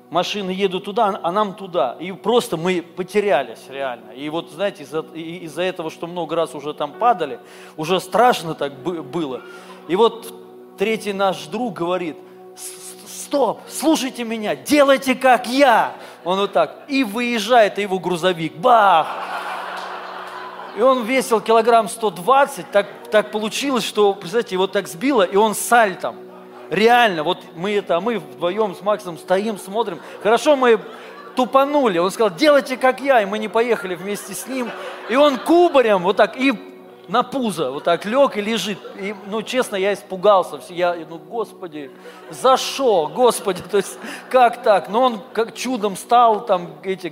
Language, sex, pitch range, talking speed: Russian, male, 175-240 Hz, 155 wpm